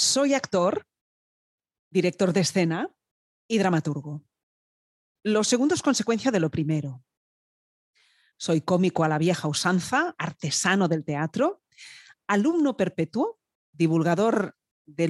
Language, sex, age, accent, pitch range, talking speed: Spanish, female, 40-59, Spanish, 160-210 Hz, 105 wpm